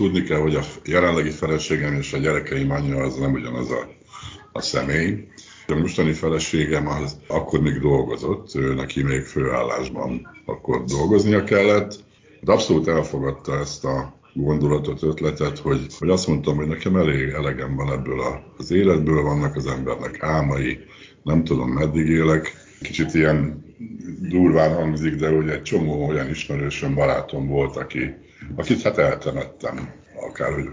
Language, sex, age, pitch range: Hungarian, male, 60-79, 70-80 Hz